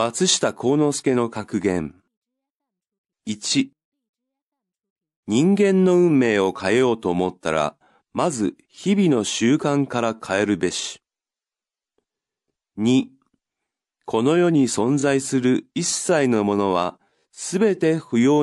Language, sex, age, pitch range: Chinese, male, 40-59, 110-180 Hz